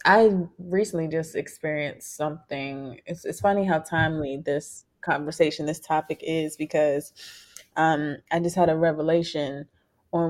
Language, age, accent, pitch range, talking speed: English, 20-39, American, 150-185 Hz, 135 wpm